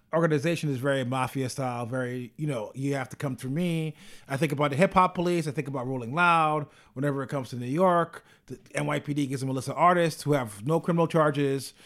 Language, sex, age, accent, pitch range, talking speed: English, male, 30-49, American, 135-160 Hz, 225 wpm